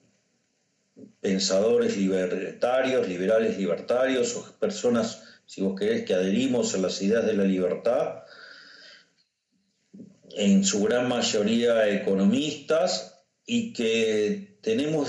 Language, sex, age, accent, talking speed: Spanish, male, 40-59, Argentinian, 100 wpm